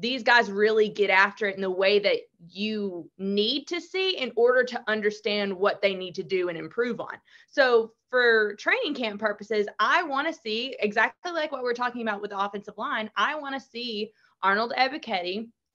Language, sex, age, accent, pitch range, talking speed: English, female, 20-39, American, 200-255 Hz, 195 wpm